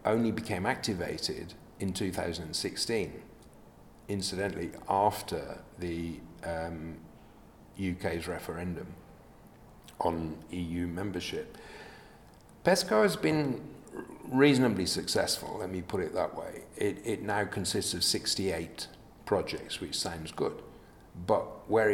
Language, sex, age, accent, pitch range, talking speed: English, male, 50-69, British, 80-95 Hz, 100 wpm